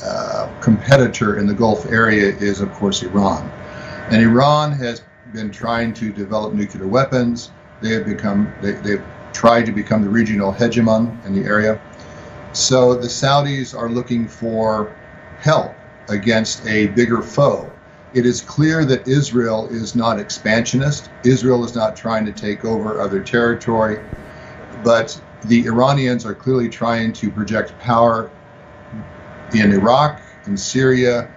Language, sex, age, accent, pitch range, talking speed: English, male, 50-69, American, 110-130 Hz, 140 wpm